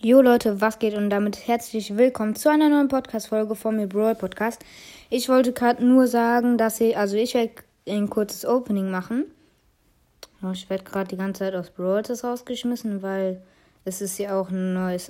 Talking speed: 185 wpm